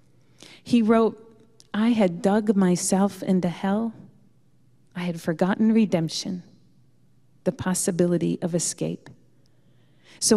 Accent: American